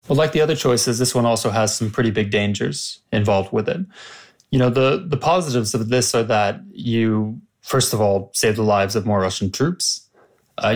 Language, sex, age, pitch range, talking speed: English, male, 20-39, 100-120 Hz, 205 wpm